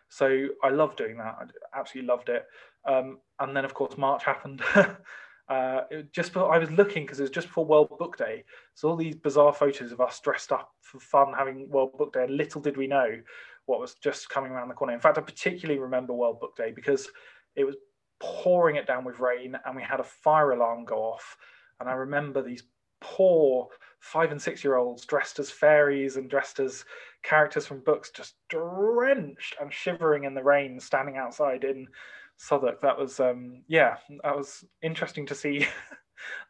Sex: male